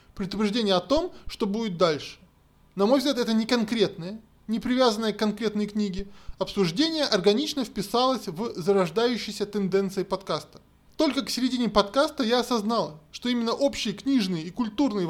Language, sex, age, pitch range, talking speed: Russian, male, 20-39, 195-245 Hz, 145 wpm